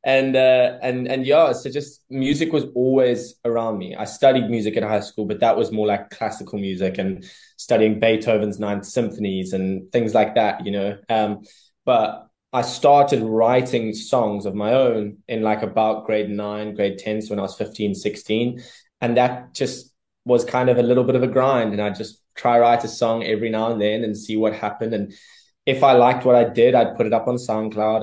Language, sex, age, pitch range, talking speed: English, male, 20-39, 105-120 Hz, 210 wpm